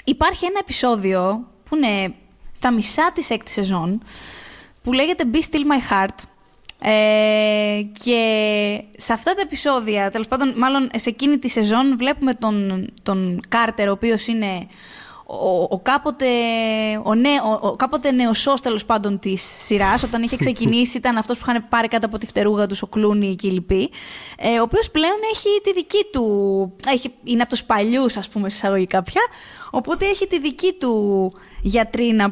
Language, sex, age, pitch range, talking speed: Greek, female, 20-39, 205-265 Hz, 165 wpm